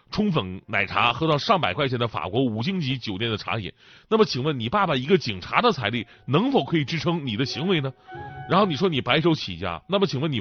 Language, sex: Chinese, male